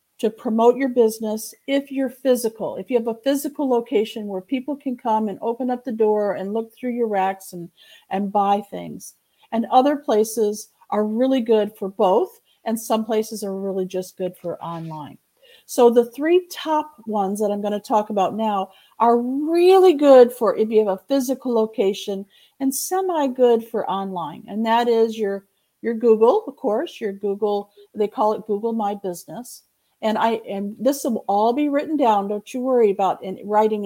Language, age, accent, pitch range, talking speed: English, 50-69, American, 195-255 Hz, 185 wpm